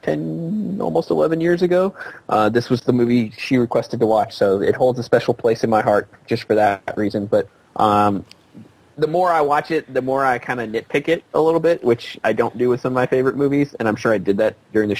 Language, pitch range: English, 110-135 Hz